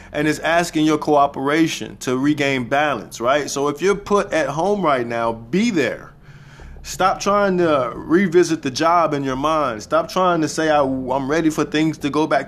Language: English